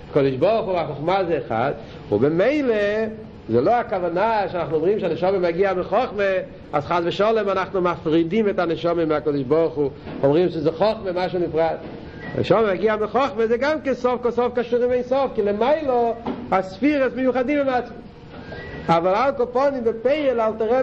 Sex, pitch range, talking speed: male, 185-235 Hz, 150 wpm